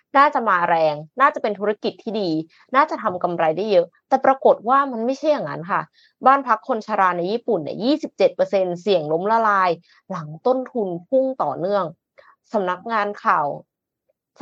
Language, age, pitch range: Thai, 20-39, 175-245 Hz